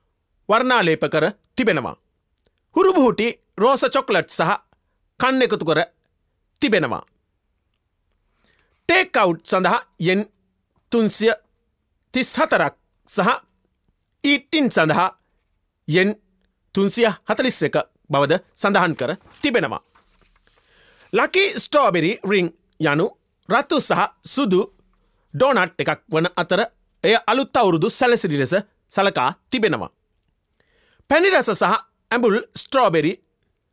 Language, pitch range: Japanese, 165-255 Hz